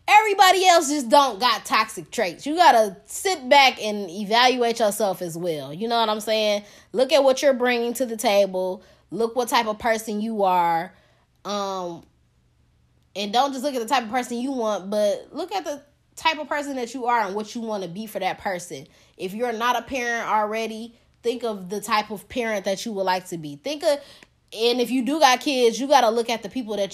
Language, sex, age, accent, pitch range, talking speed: English, female, 10-29, American, 195-255 Hz, 225 wpm